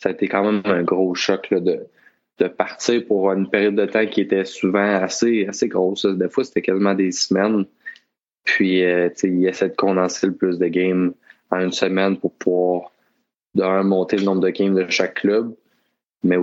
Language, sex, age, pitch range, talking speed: French, male, 20-39, 90-100 Hz, 195 wpm